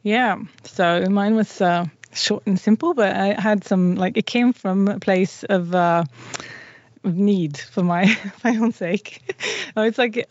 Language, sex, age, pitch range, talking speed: English, female, 20-39, 180-205 Hz, 165 wpm